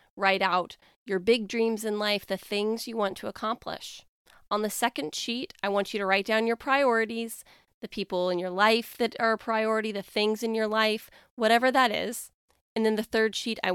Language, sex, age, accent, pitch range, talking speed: English, female, 20-39, American, 195-235 Hz, 210 wpm